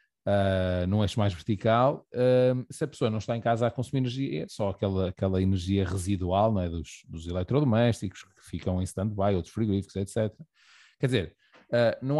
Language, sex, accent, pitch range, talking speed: Portuguese, male, Brazilian, 95-125 Hz, 185 wpm